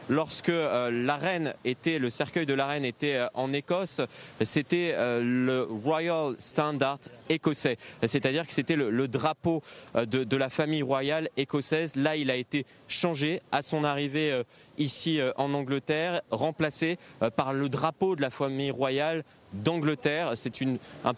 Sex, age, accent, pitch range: male, 20-39, French, 135-160 Hz